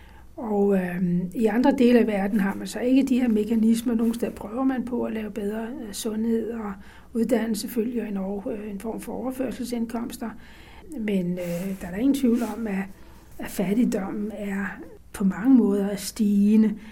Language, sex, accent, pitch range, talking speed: Danish, female, native, 205-235 Hz, 175 wpm